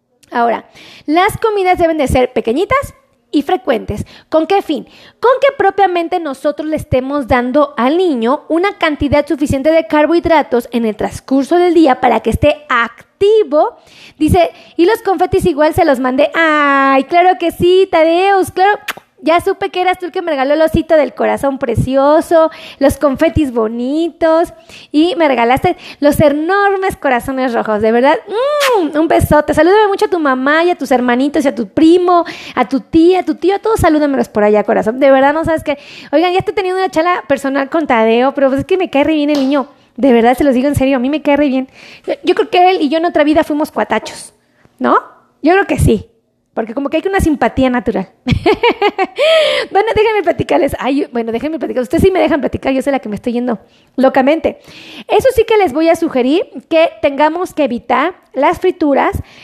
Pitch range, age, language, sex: 270-350 Hz, 20-39, Spanish, female